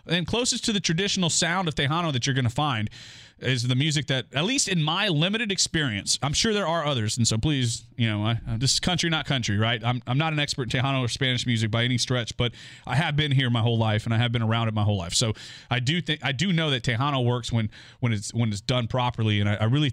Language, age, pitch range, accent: English, 30-49, 115-150 Hz, American